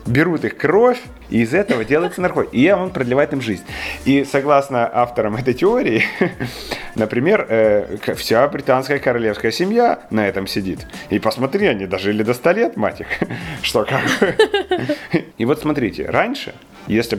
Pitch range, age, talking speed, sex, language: 105-145 Hz, 30-49, 145 wpm, male, Ukrainian